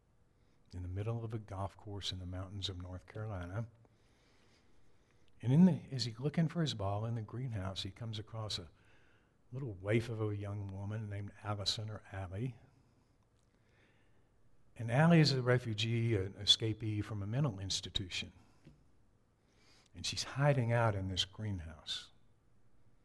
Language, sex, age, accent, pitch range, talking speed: English, male, 60-79, American, 100-120 Hz, 145 wpm